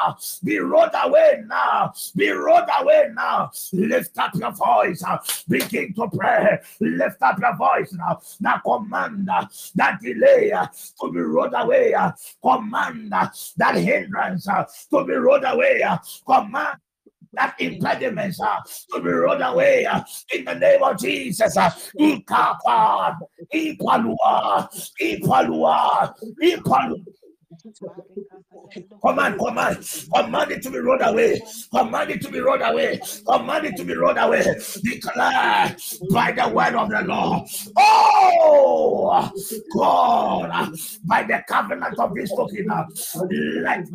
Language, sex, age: English, male, 50-69